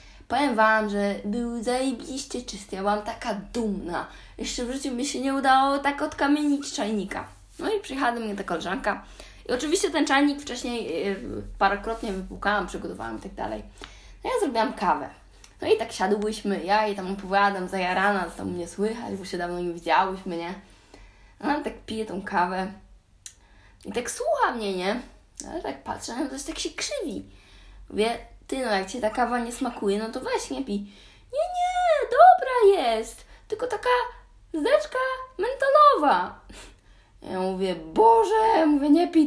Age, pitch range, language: 20-39, 190-260 Hz, Polish